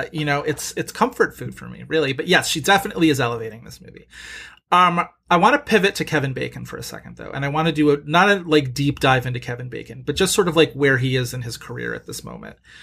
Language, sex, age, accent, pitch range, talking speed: English, male, 30-49, American, 125-155 Hz, 260 wpm